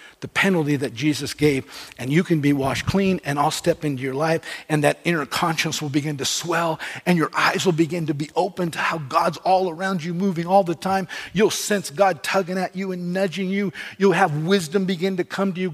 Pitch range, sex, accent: 145-175 Hz, male, American